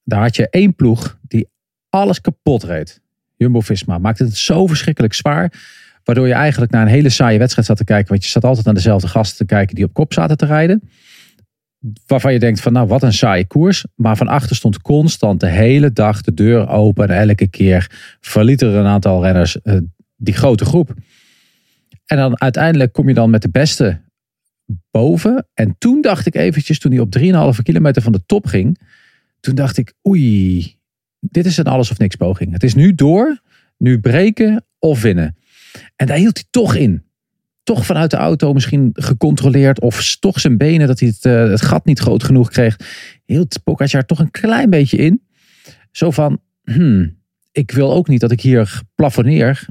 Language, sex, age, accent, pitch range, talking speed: Dutch, male, 40-59, Dutch, 110-155 Hz, 190 wpm